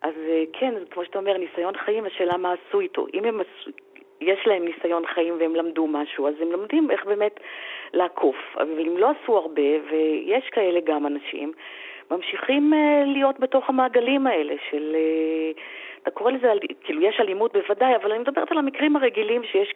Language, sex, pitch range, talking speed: Hebrew, female, 170-280 Hz, 165 wpm